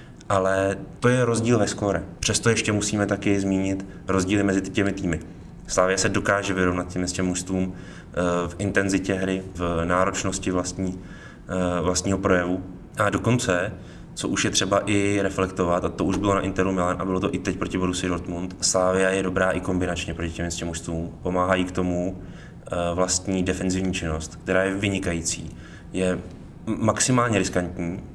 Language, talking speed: Czech, 155 wpm